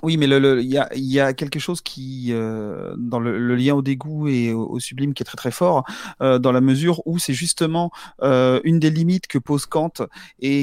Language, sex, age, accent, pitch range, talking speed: French, male, 30-49, French, 125-150 Hz, 245 wpm